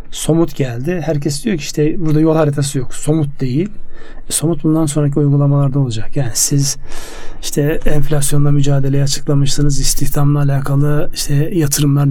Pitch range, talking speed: 140-160 Hz, 135 wpm